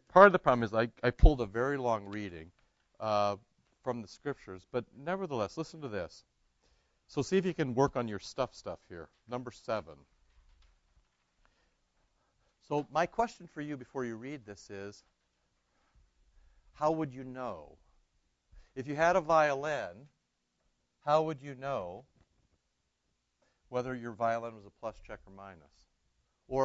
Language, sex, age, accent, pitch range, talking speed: English, male, 60-79, American, 80-130 Hz, 150 wpm